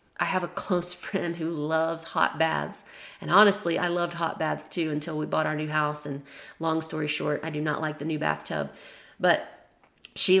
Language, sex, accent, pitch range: English, female, American, 175-215 Hz